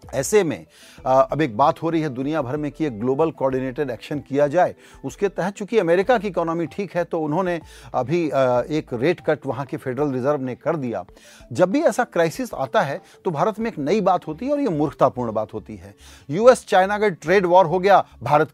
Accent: native